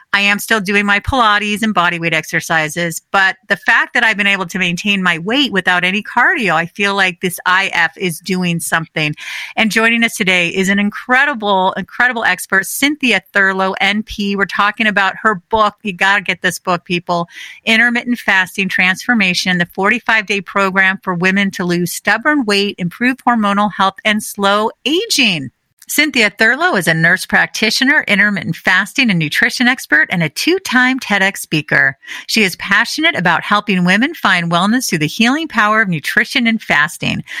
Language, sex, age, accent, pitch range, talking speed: English, female, 40-59, American, 185-235 Hz, 170 wpm